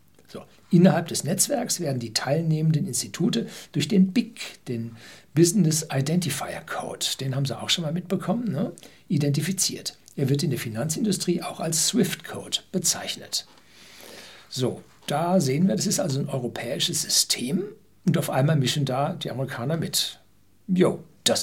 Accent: German